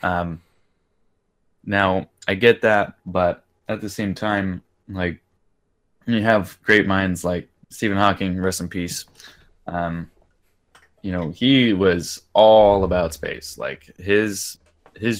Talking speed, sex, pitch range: 125 wpm, male, 85-100 Hz